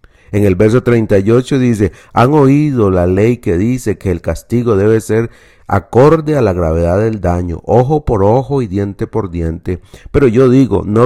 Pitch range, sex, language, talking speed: 95-130 Hz, male, Spanish, 180 wpm